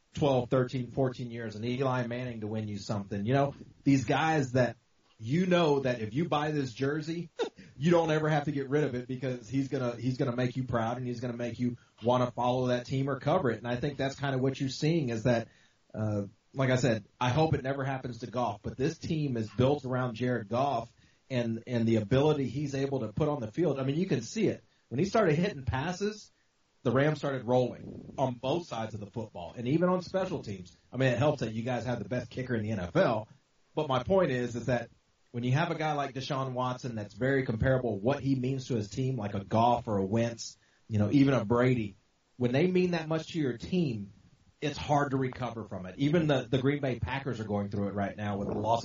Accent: American